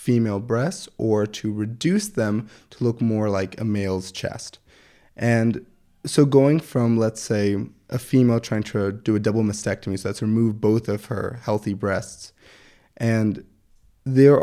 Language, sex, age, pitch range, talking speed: English, male, 20-39, 105-125 Hz, 155 wpm